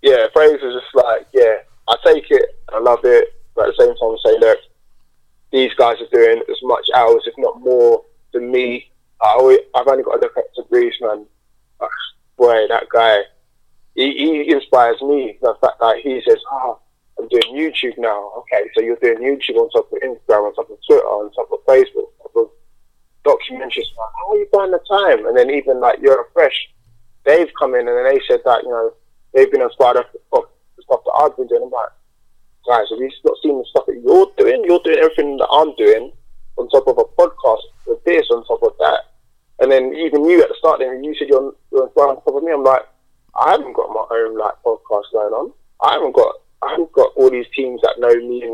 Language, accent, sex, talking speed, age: English, British, male, 225 wpm, 20-39